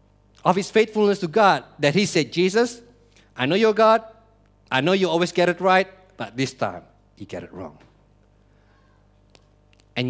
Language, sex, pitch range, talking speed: English, male, 100-150 Hz, 165 wpm